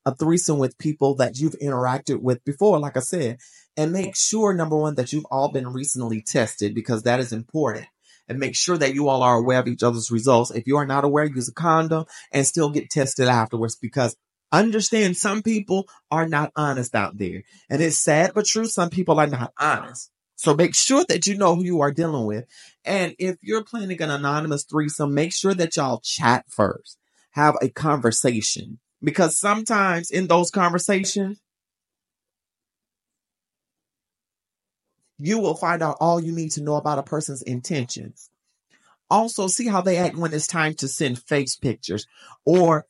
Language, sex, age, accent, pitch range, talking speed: English, male, 30-49, American, 130-175 Hz, 180 wpm